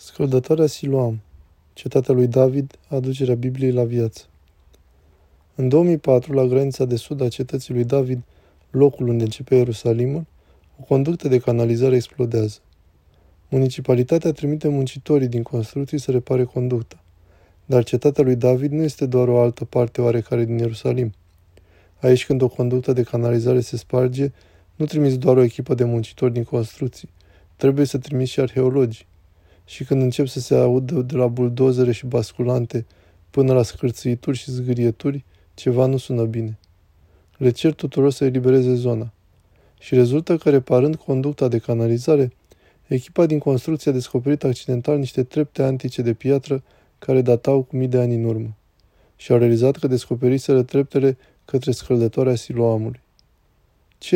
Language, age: Romanian, 20-39